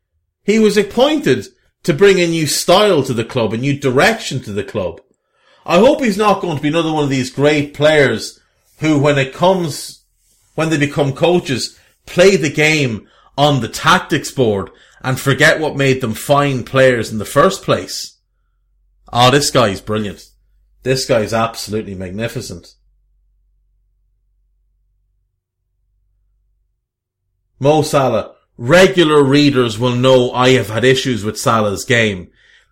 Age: 30-49